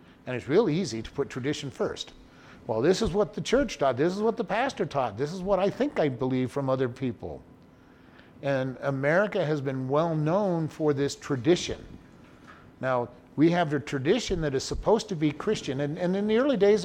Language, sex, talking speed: English, male, 205 wpm